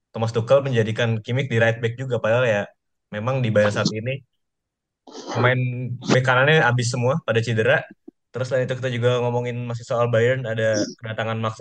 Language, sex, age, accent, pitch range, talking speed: Indonesian, male, 20-39, native, 105-120 Hz, 175 wpm